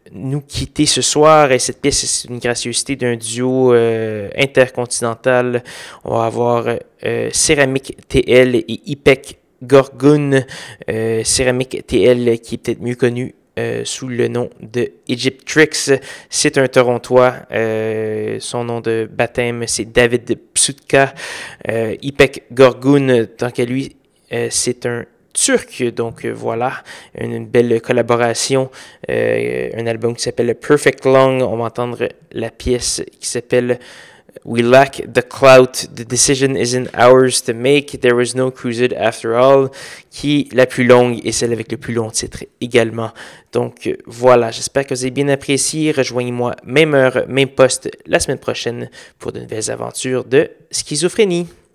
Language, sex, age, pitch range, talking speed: French, male, 20-39, 120-135 Hz, 150 wpm